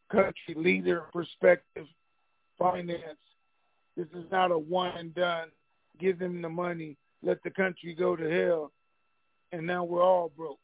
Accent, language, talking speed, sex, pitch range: American, English, 135 wpm, male, 170-190 Hz